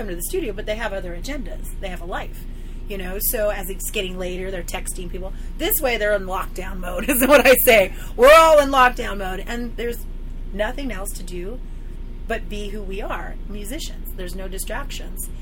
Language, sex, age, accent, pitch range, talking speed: English, female, 30-49, American, 185-235 Hz, 200 wpm